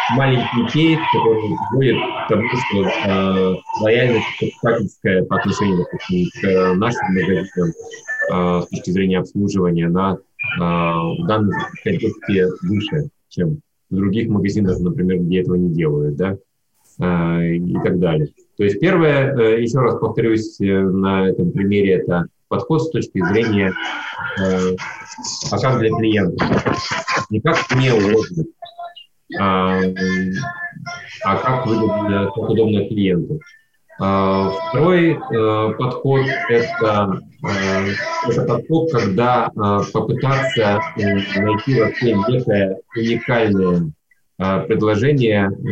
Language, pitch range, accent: Russian, 95-130 Hz, native